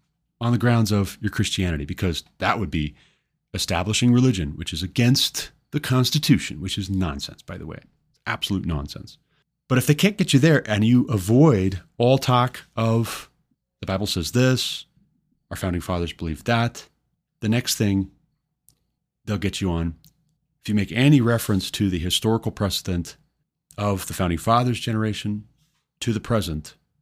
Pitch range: 95-130 Hz